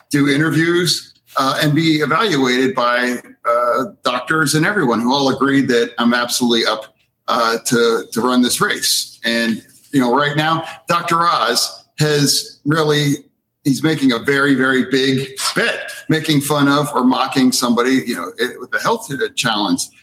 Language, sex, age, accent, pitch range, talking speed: English, male, 50-69, American, 130-160 Hz, 160 wpm